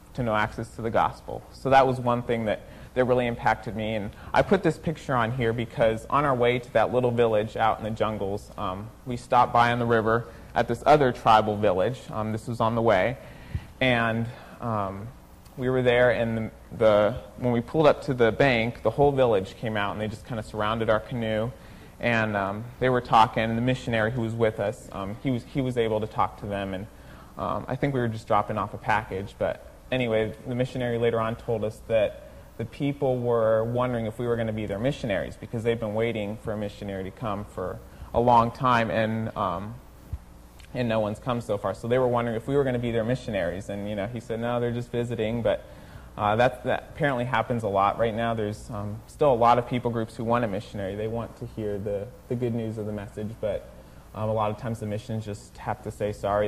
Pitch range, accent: 105-120 Hz, American